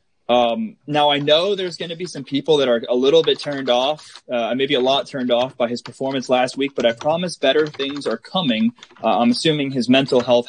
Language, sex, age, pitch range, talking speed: English, male, 20-39, 120-155 Hz, 235 wpm